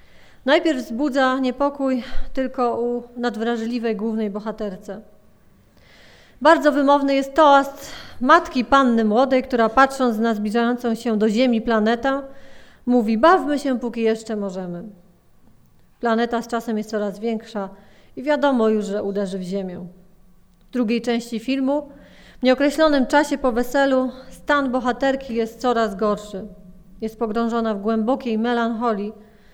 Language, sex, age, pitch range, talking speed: Polish, female, 30-49, 210-270 Hz, 125 wpm